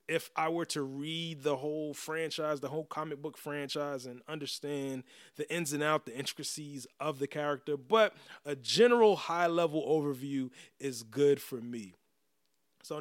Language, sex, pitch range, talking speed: English, male, 130-160 Hz, 155 wpm